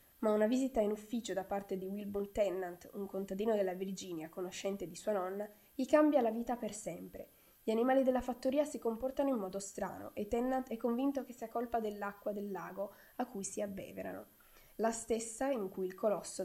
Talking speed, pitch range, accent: 190 wpm, 195-245 Hz, native